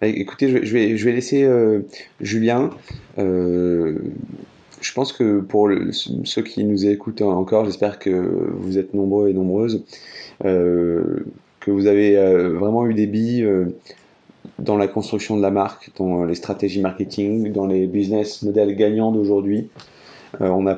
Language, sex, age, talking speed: French, male, 30-49, 135 wpm